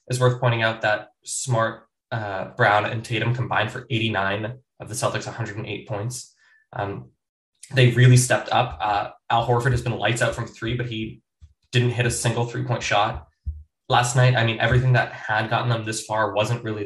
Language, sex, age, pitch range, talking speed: English, male, 20-39, 110-130 Hz, 190 wpm